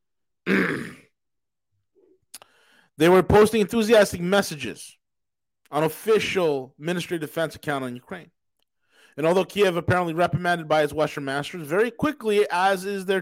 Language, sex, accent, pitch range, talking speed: English, male, American, 145-195 Hz, 125 wpm